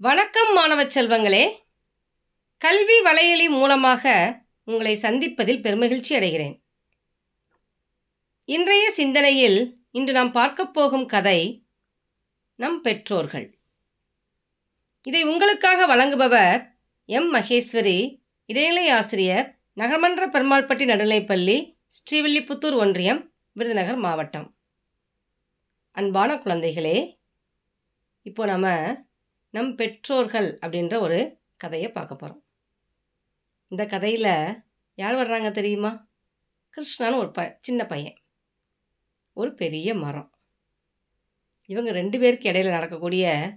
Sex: female